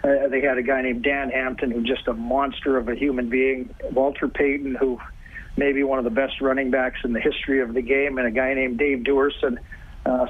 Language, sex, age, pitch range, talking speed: English, male, 40-59, 130-145 Hz, 235 wpm